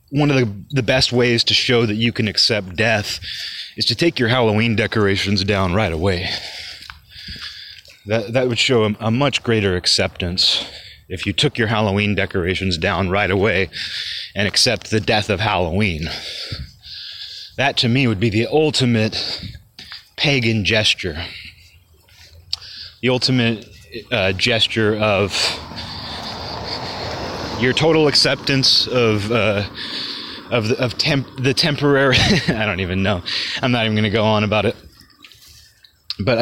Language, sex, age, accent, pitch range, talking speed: English, male, 30-49, American, 95-120 Hz, 140 wpm